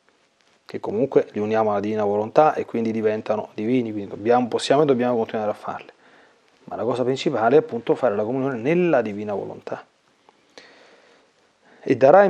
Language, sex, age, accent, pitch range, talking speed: Italian, male, 40-59, native, 115-160 Hz, 160 wpm